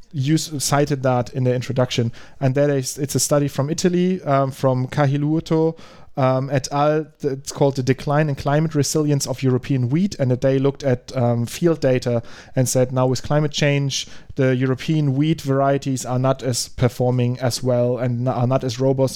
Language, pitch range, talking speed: English, 130-150 Hz, 175 wpm